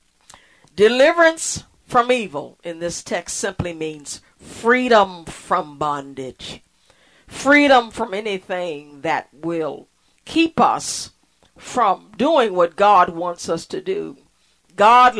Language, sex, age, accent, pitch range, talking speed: English, female, 50-69, American, 165-225 Hz, 105 wpm